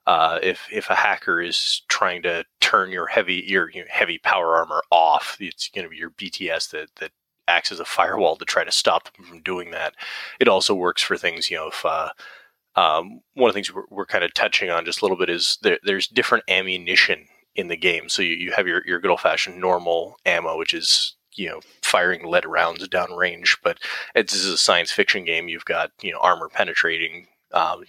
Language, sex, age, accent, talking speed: English, male, 30-49, American, 220 wpm